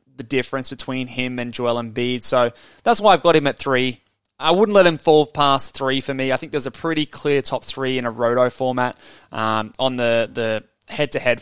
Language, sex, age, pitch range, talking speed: English, male, 20-39, 115-150 Hz, 215 wpm